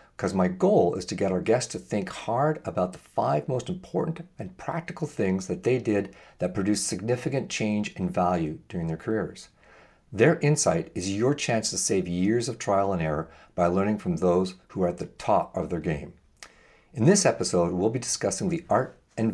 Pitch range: 90-125 Hz